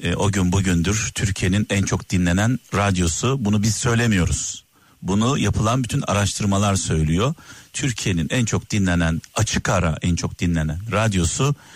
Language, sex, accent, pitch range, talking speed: Turkish, male, native, 100-135 Hz, 135 wpm